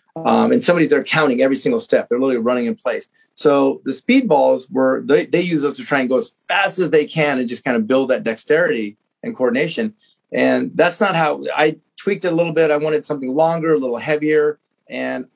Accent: American